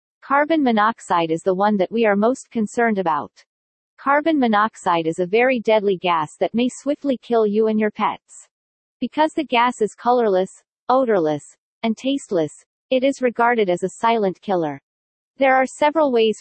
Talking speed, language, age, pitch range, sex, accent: 165 wpm, English, 40-59, 190-245 Hz, female, American